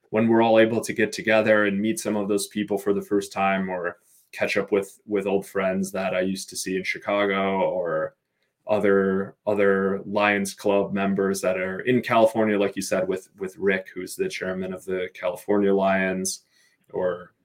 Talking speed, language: 190 wpm, English